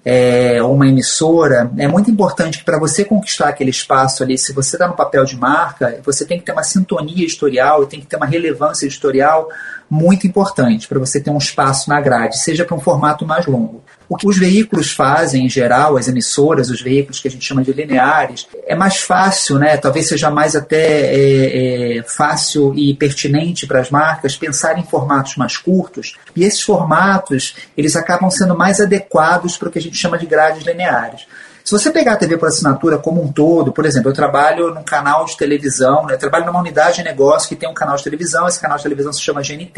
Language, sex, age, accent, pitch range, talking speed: Portuguese, male, 40-59, Brazilian, 135-175 Hz, 210 wpm